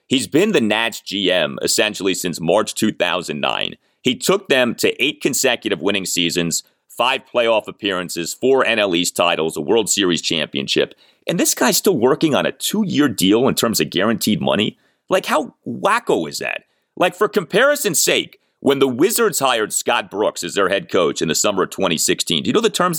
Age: 30-49